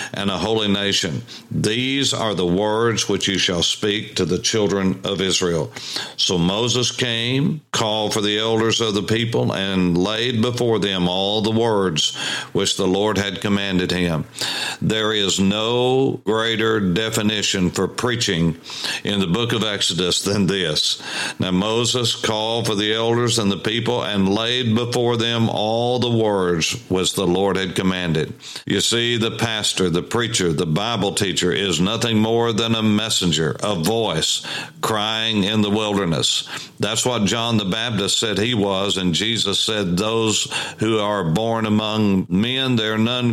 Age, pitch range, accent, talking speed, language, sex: 50-69, 95-115 Hz, American, 160 wpm, English, male